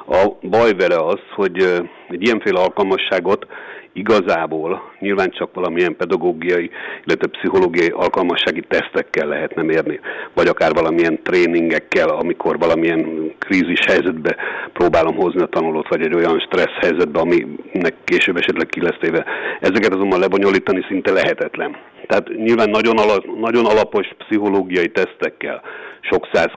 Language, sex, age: Hungarian, male, 60-79